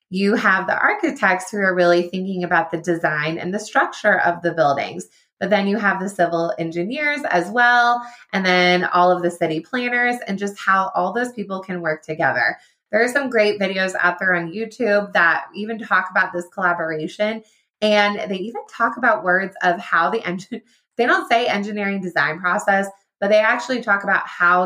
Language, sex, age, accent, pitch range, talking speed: English, female, 20-39, American, 175-235 Hz, 190 wpm